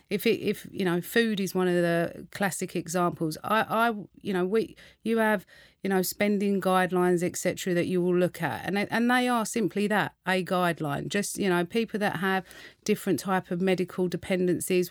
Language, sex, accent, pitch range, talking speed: English, female, British, 165-190 Hz, 195 wpm